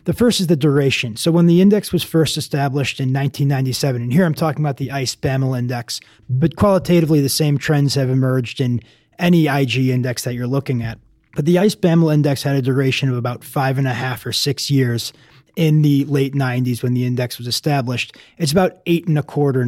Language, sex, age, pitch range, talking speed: English, male, 20-39, 130-155 Hz, 205 wpm